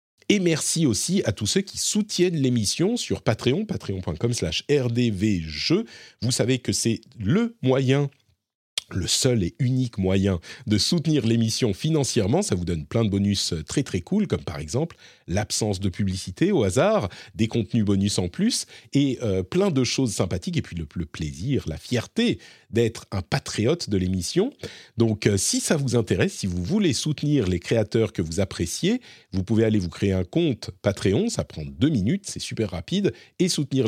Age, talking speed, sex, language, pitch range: 40-59, 175 wpm, male, French, 95-130 Hz